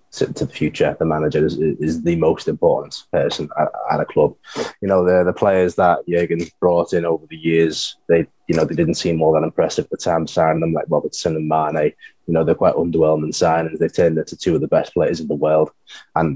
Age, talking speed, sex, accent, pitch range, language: 20-39, 240 wpm, male, British, 80-100 Hz, English